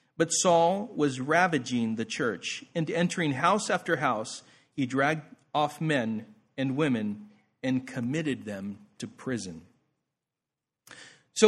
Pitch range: 130-180 Hz